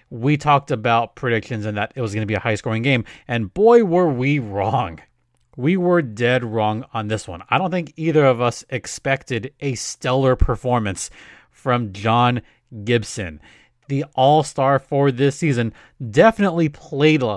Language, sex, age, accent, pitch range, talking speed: English, male, 30-49, American, 120-170 Hz, 160 wpm